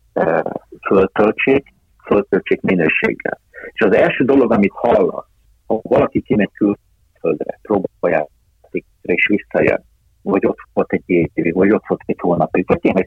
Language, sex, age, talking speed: Hungarian, male, 50-69, 140 wpm